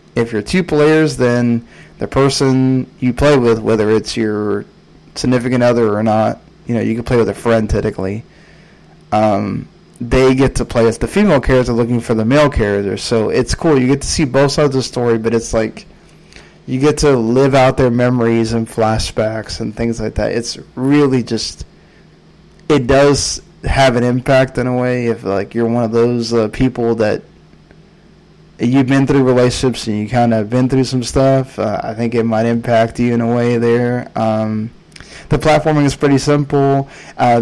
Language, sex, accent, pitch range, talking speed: English, male, American, 115-135 Hz, 190 wpm